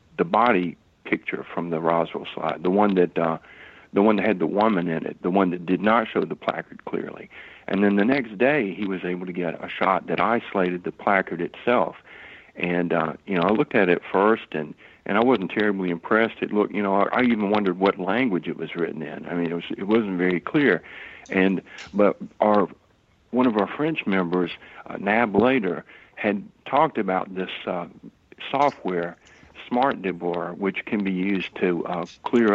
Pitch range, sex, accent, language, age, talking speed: 90-105 Hz, male, American, English, 60-79, 200 wpm